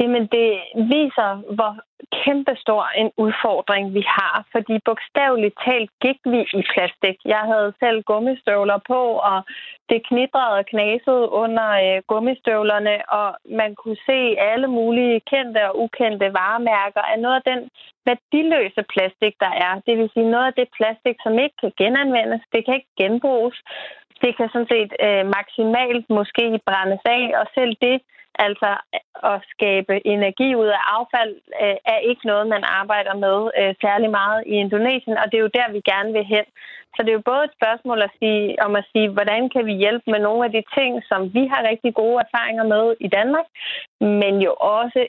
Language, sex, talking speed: Danish, female, 175 wpm